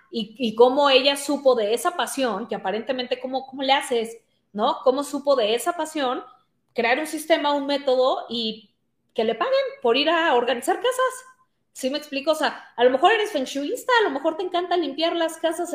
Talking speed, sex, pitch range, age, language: 200 wpm, female, 230-315 Hz, 30-49, Spanish